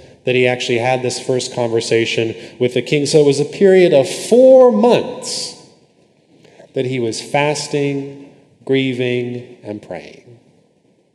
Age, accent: 30-49, American